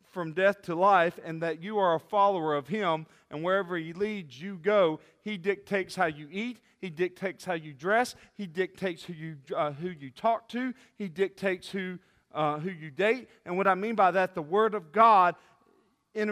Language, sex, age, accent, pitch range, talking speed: English, male, 40-59, American, 150-200 Hz, 200 wpm